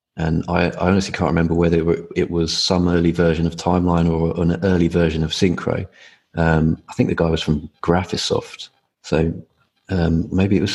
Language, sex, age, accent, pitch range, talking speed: English, male, 30-49, British, 85-100 Hz, 185 wpm